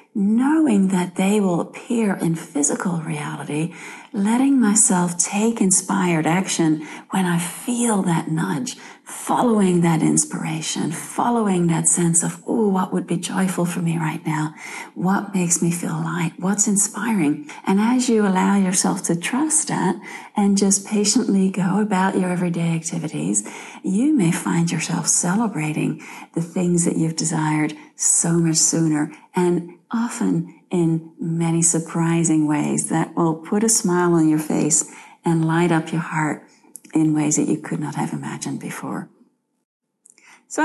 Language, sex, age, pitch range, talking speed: English, female, 40-59, 160-200 Hz, 145 wpm